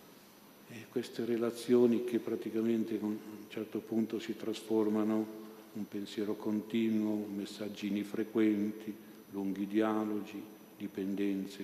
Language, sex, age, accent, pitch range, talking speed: Italian, male, 50-69, native, 100-110 Hz, 105 wpm